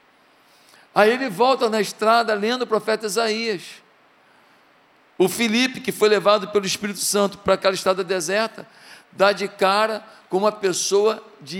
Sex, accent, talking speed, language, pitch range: male, Brazilian, 145 wpm, Portuguese, 175-215 Hz